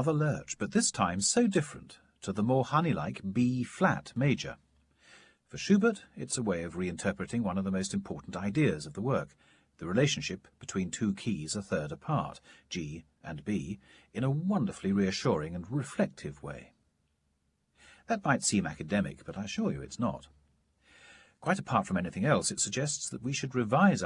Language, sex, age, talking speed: English, male, 40-59, 165 wpm